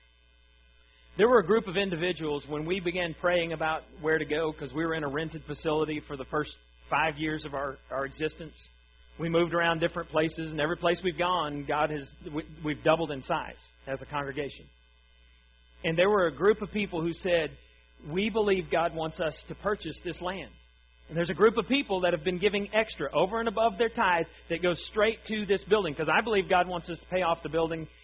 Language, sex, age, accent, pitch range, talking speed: English, male, 40-59, American, 150-215 Hz, 215 wpm